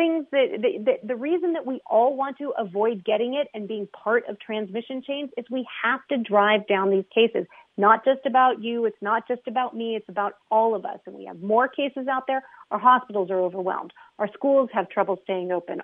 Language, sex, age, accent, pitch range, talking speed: English, female, 40-59, American, 215-255 Hz, 225 wpm